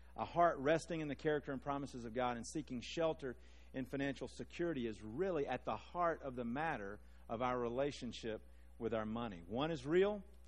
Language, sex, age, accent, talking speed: English, male, 50-69, American, 190 wpm